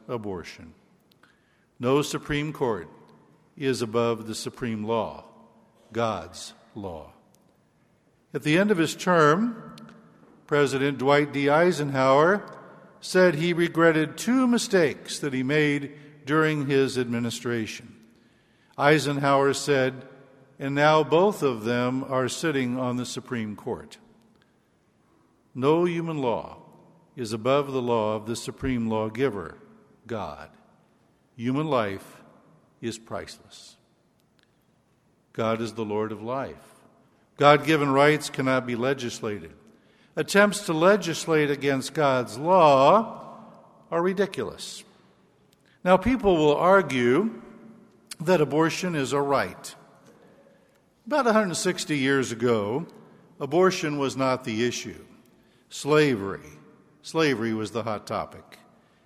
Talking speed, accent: 105 wpm, American